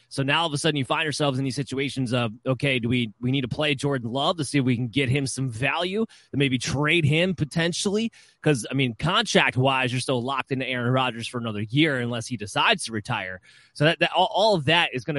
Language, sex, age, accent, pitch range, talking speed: English, male, 20-39, American, 125-155 Hz, 245 wpm